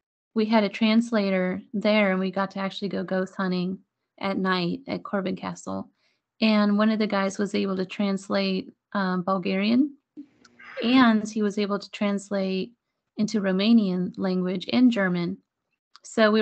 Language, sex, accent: English, female, American